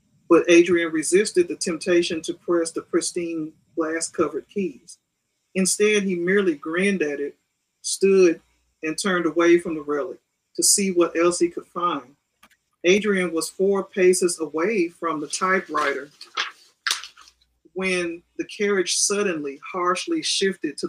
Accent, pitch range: American, 160-190 Hz